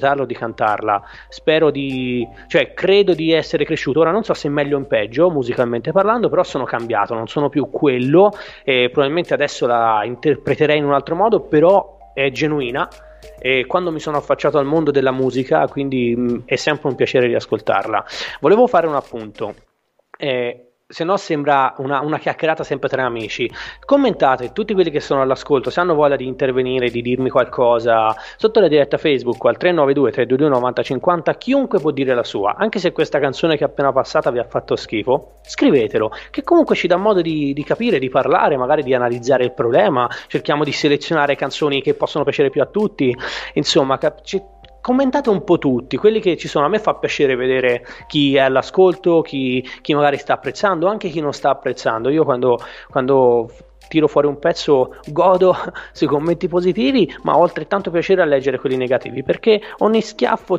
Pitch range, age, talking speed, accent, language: 130-180 Hz, 20-39, 180 wpm, native, Italian